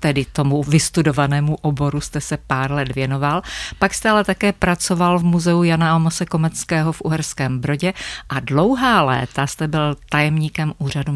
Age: 50-69